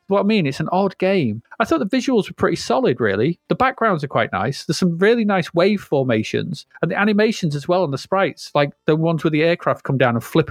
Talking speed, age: 250 wpm, 30-49